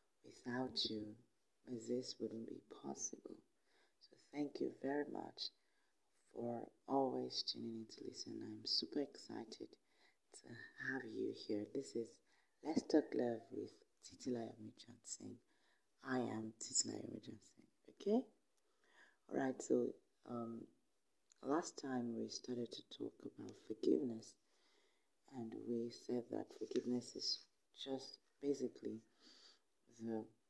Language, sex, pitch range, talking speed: English, female, 110-135 Hz, 110 wpm